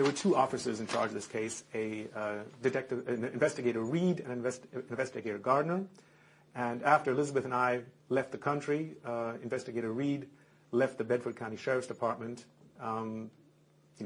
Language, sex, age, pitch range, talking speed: English, male, 40-59, 120-150 Hz, 165 wpm